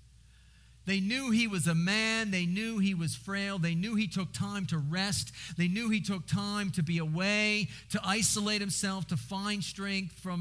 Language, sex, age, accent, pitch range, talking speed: English, male, 50-69, American, 165-210 Hz, 190 wpm